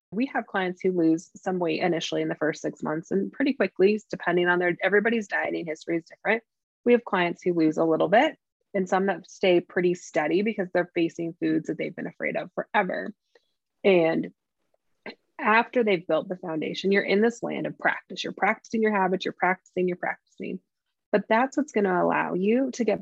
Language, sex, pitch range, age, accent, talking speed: English, female, 180-225 Hz, 20-39, American, 200 wpm